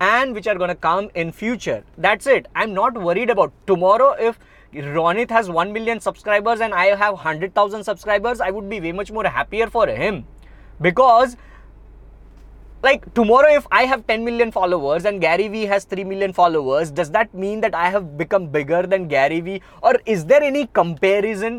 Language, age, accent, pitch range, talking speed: Hindi, 20-39, native, 175-230 Hz, 190 wpm